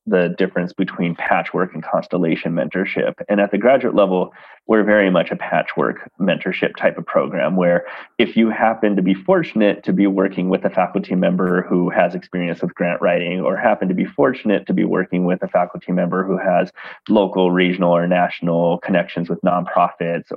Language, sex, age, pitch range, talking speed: English, male, 30-49, 90-100 Hz, 185 wpm